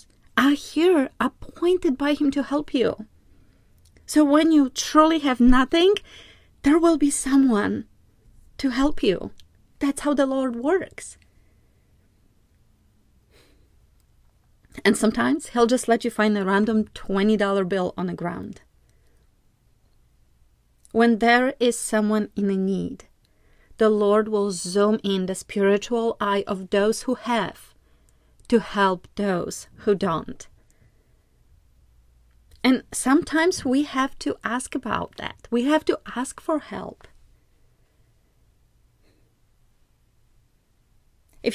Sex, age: female, 30-49